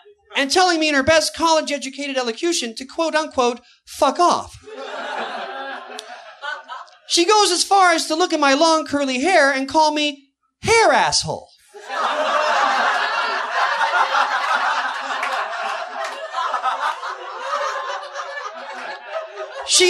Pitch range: 275-345 Hz